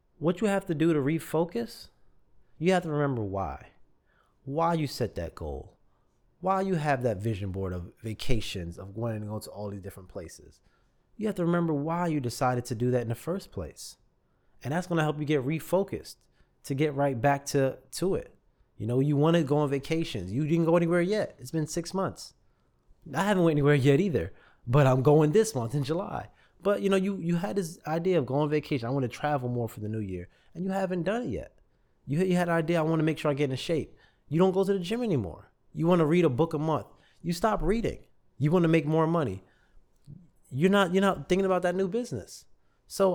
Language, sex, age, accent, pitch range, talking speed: English, male, 20-39, American, 125-170 Hz, 235 wpm